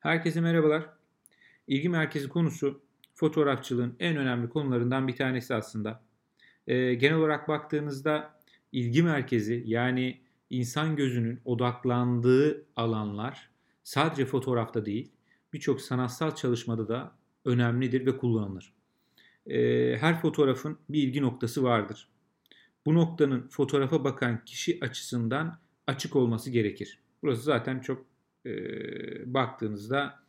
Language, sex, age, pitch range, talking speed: Turkish, male, 40-59, 120-150 Hz, 105 wpm